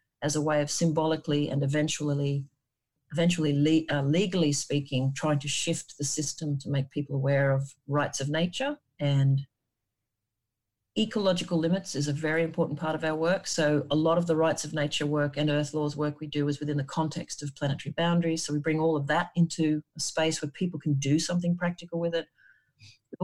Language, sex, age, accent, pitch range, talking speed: English, female, 40-59, Australian, 145-165 Hz, 195 wpm